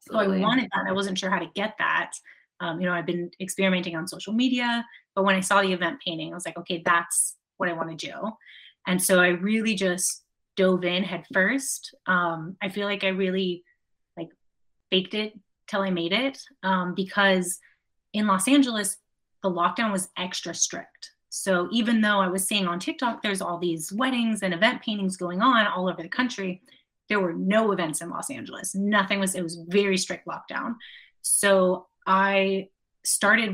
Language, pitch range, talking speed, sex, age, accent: English, 180-210 Hz, 190 wpm, female, 30-49, American